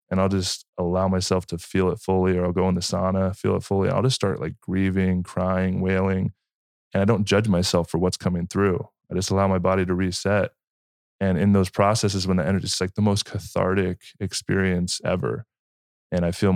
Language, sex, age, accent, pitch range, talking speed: English, male, 20-39, American, 90-100 Hz, 210 wpm